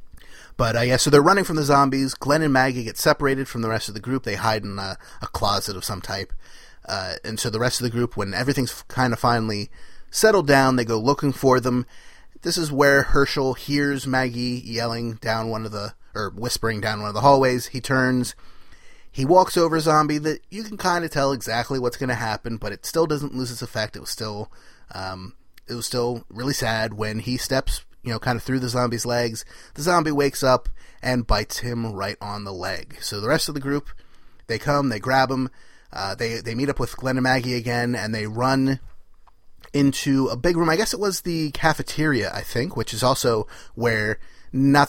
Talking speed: 220 wpm